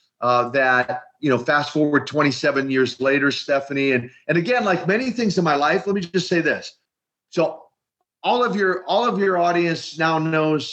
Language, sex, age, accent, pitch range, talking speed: English, male, 40-59, American, 135-165 Hz, 190 wpm